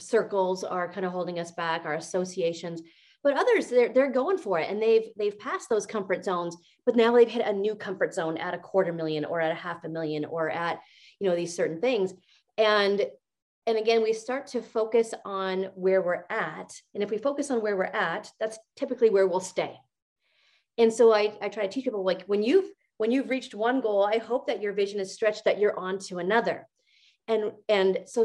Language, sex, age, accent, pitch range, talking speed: English, female, 30-49, American, 185-245 Hz, 220 wpm